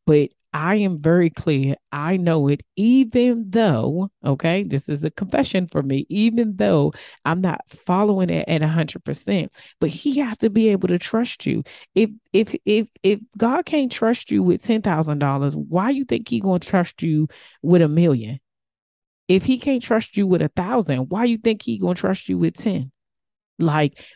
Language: English